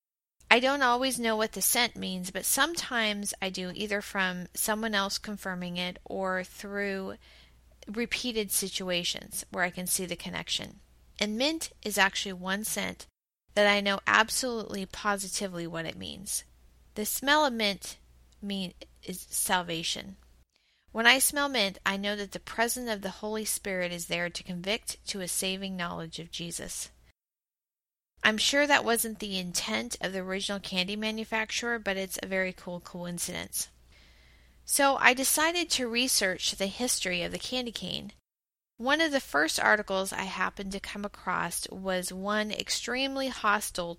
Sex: female